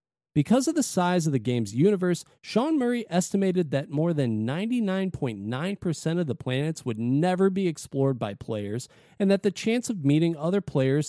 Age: 40-59